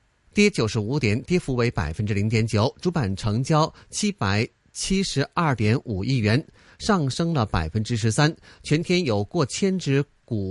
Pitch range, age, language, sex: 115-175 Hz, 30-49, Chinese, male